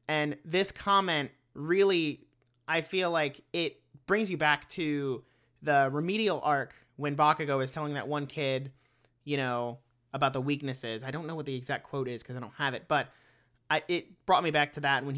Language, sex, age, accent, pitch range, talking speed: English, male, 30-49, American, 130-165 Hz, 190 wpm